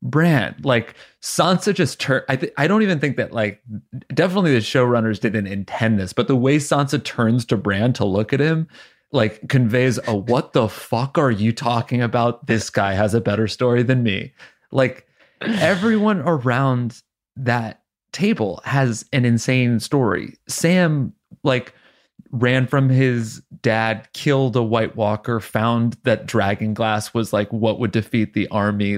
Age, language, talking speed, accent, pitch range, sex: 30-49, English, 160 wpm, American, 110-135 Hz, male